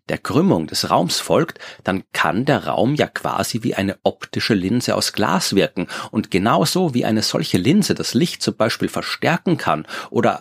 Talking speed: 180 wpm